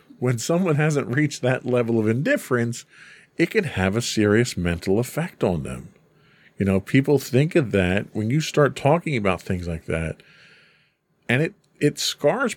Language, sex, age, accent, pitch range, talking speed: English, male, 40-59, American, 95-145 Hz, 165 wpm